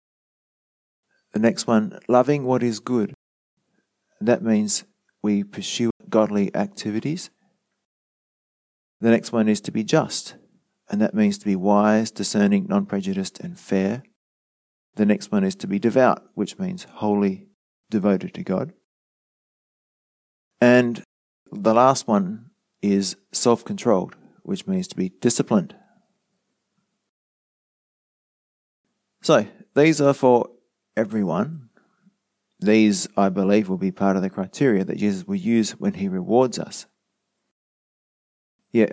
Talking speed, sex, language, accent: 120 wpm, male, English, Australian